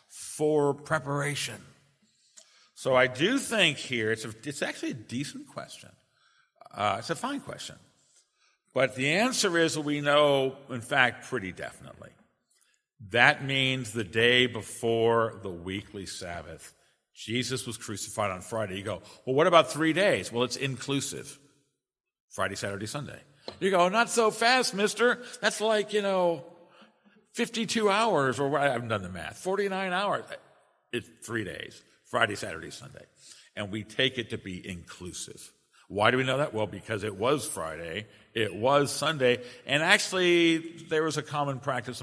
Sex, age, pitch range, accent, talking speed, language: male, 50-69, 115-160 Hz, American, 160 wpm, English